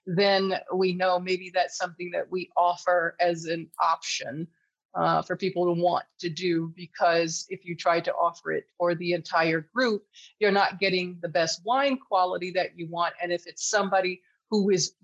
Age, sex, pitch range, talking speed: 40-59, female, 165-185 Hz, 185 wpm